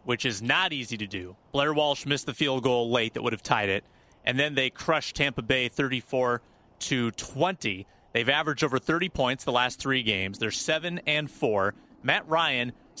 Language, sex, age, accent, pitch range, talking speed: English, male, 30-49, American, 125-170 Hz, 195 wpm